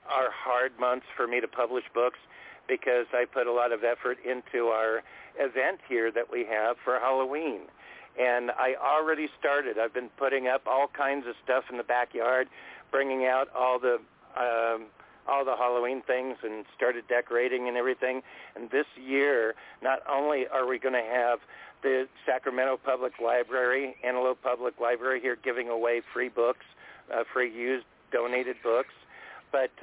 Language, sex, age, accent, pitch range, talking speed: English, male, 50-69, American, 120-130 Hz, 165 wpm